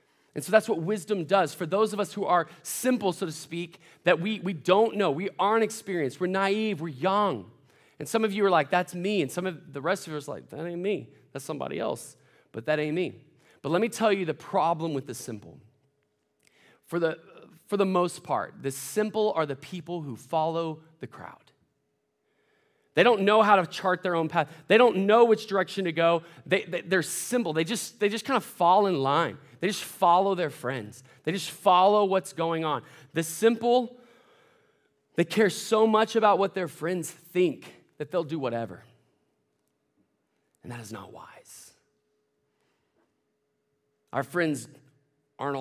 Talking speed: 190 wpm